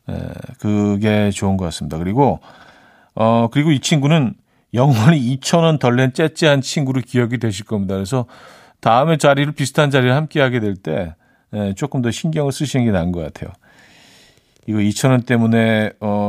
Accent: native